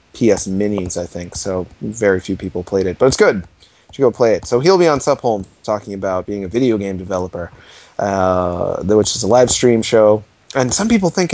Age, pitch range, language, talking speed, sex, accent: 30-49, 100-125 Hz, English, 220 wpm, male, American